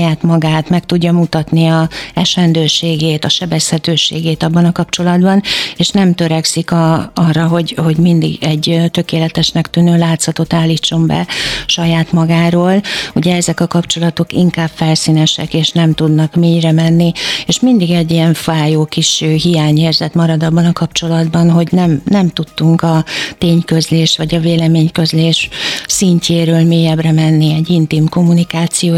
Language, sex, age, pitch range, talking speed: Hungarian, female, 60-79, 160-175 Hz, 130 wpm